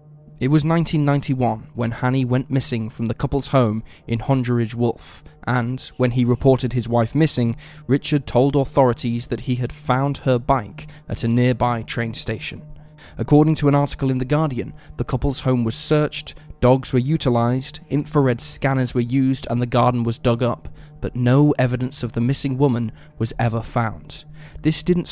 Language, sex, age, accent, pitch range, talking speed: English, male, 20-39, British, 120-140 Hz, 170 wpm